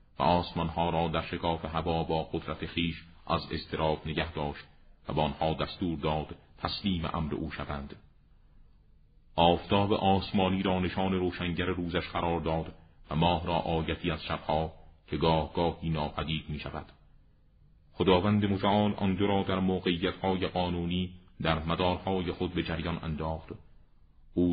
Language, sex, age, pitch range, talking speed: Persian, male, 40-59, 80-95 Hz, 135 wpm